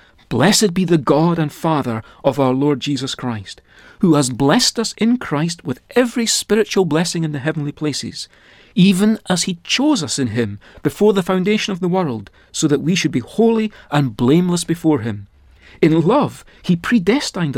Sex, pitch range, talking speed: male, 130-205 Hz, 180 wpm